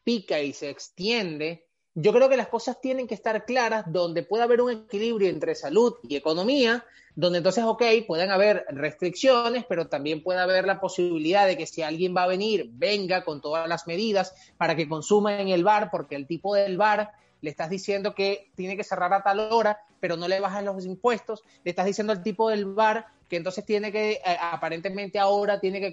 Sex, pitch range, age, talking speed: male, 180-230 Hz, 30-49, 205 wpm